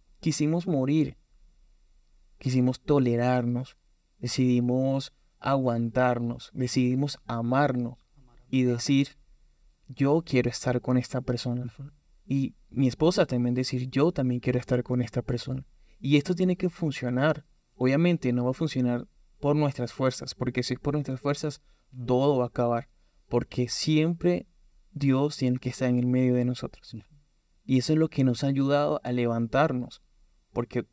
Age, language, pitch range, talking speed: 20-39, Spanish, 120-140 Hz, 140 wpm